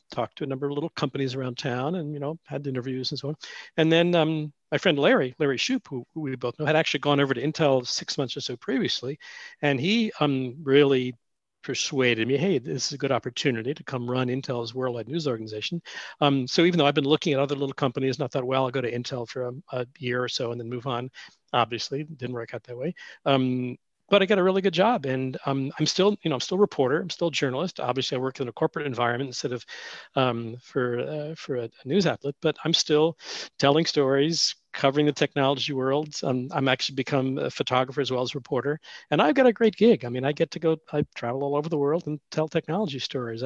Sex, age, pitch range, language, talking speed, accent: male, 40-59, 130-155 Hz, English, 240 wpm, American